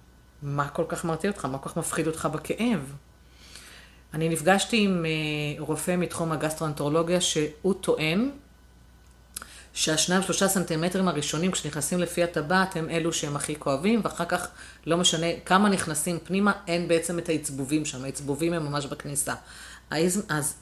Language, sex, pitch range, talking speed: Hebrew, female, 140-180 Hz, 145 wpm